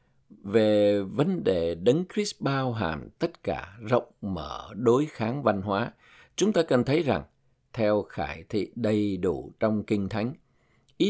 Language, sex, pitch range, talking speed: Vietnamese, male, 100-135 Hz, 155 wpm